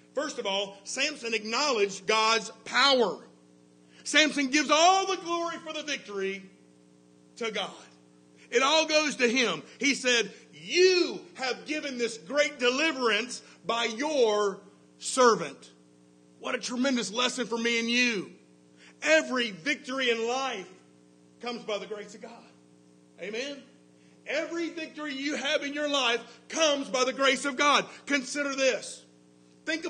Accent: American